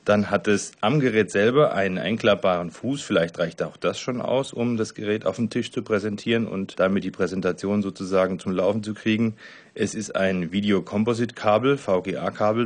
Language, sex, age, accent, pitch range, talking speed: German, male, 30-49, German, 95-120 Hz, 175 wpm